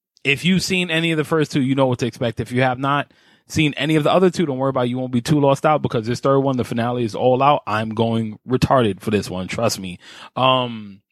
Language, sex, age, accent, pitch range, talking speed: English, male, 20-39, American, 115-145 Hz, 275 wpm